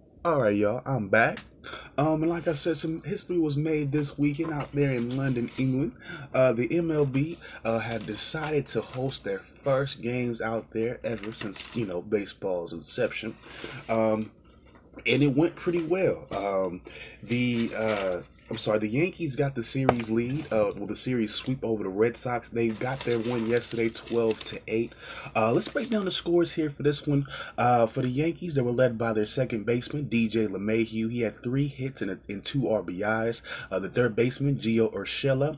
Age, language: 20-39, English